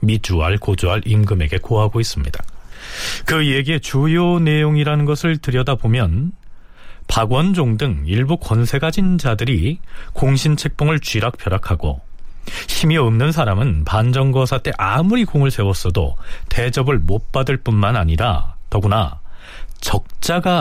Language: Korean